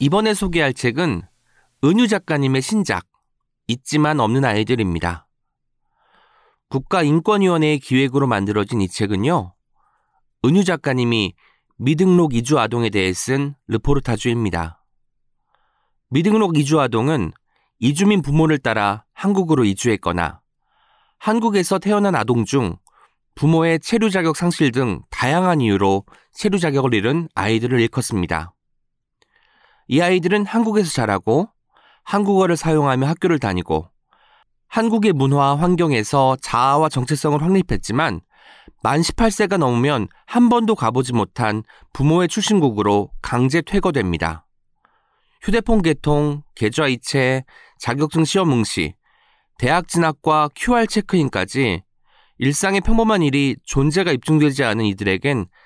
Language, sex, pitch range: Korean, male, 115-180 Hz